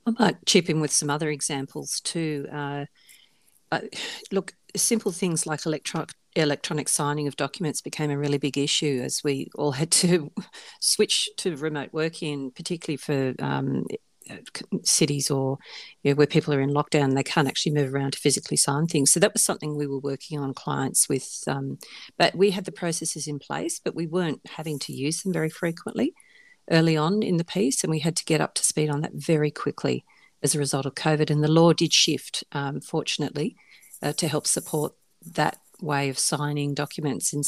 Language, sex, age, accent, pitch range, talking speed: English, female, 40-59, Australian, 140-165 Hz, 195 wpm